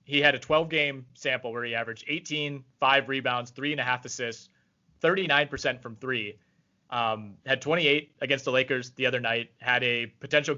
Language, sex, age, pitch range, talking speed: English, male, 30-49, 120-145 Hz, 175 wpm